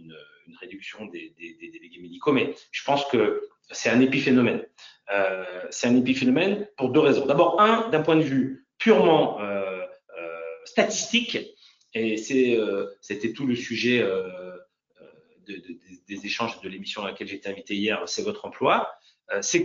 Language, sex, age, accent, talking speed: French, male, 40-59, French, 170 wpm